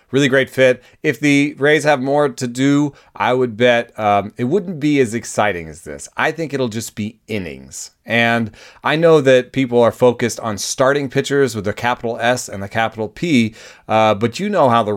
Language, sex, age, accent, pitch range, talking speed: English, male, 30-49, American, 100-125 Hz, 205 wpm